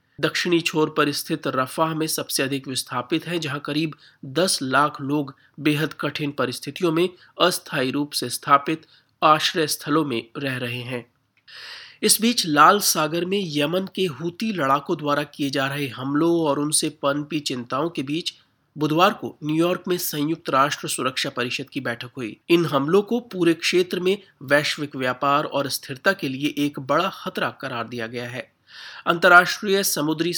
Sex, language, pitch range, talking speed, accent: male, Hindi, 135-170 Hz, 160 wpm, native